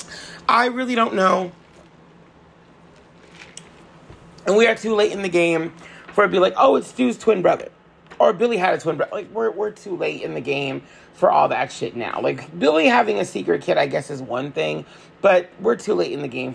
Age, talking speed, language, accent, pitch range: 30-49, 215 wpm, English, American, 130-210 Hz